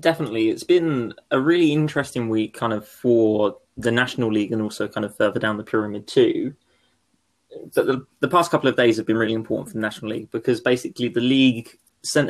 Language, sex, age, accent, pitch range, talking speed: English, male, 20-39, British, 110-130 Hz, 200 wpm